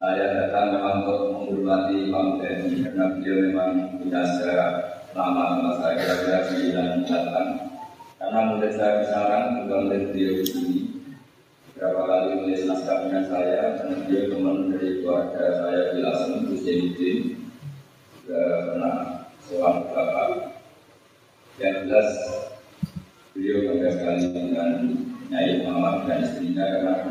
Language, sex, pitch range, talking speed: Indonesian, male, 95-125 Hz, 75 wpm